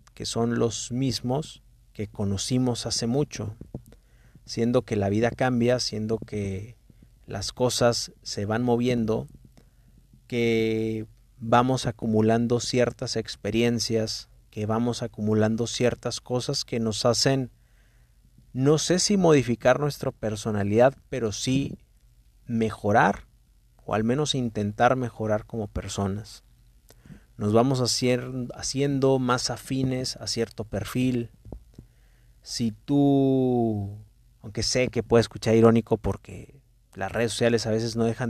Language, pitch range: Spanish, 110-125 Hz